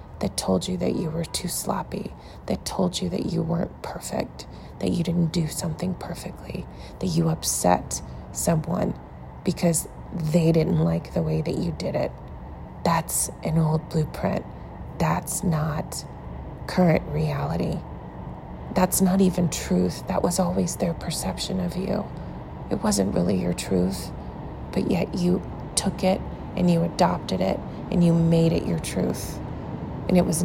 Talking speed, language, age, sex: 150 wpm, English, 30-49, female